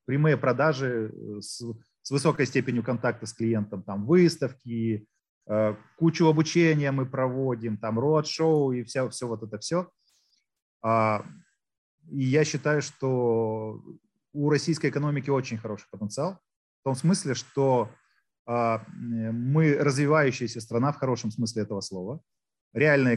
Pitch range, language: 115-145 Hz, Russian